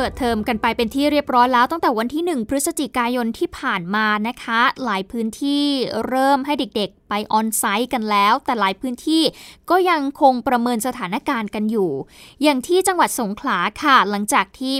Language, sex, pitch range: Thai, female, 220-275 Hz